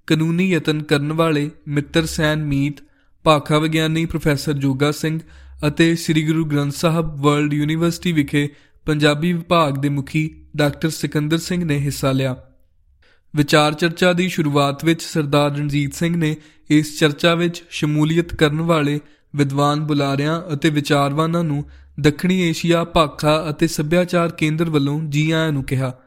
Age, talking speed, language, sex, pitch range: 20-39, 115 wpm, Punjabi, male, 145-165 Hz